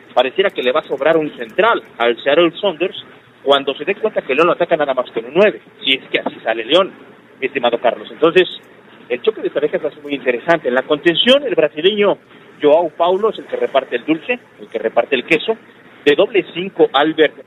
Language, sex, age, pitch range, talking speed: Spanish, male, 40-59, 135-215 Hz, 215 wpm